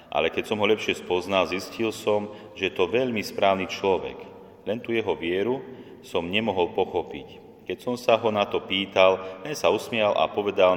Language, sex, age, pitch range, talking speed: Slovak, male, 40-59, 90-105 Hz, 185 wpm